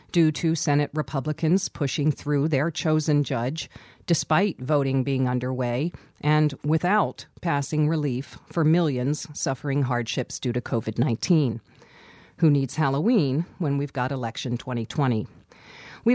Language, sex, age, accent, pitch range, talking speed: English, female, 40-59, American, 130-165 Hz, 125 wpm